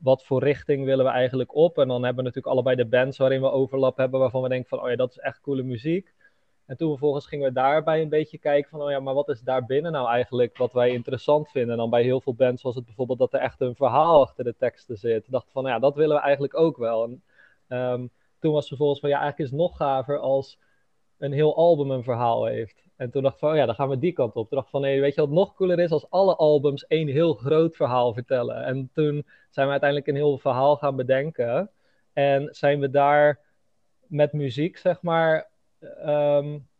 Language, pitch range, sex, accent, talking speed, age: Dutch, 130-155 Hz, male, Dutch, 245 wpm, 20-39